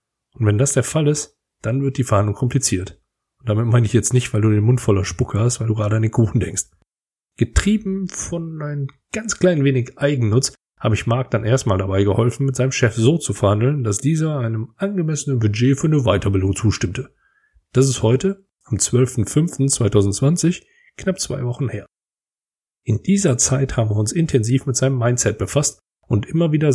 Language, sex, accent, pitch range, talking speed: German, male, German, 110-140 Hz, 185 wpm